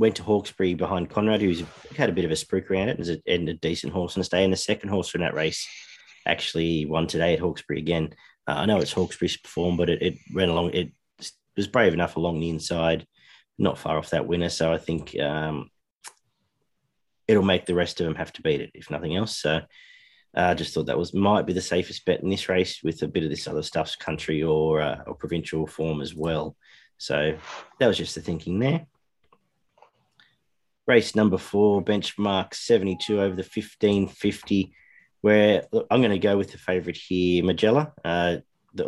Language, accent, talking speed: English, Australian, 205 wpm